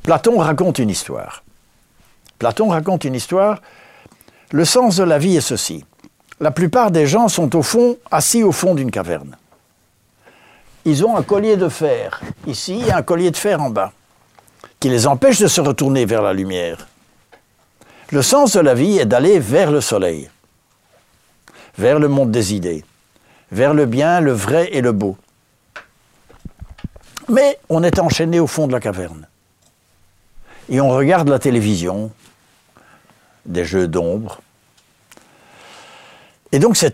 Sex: male